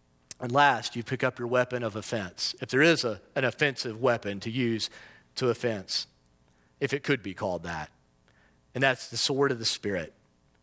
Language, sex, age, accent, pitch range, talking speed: English, male, 40-59, American, 115-165 Hz, 180 wpm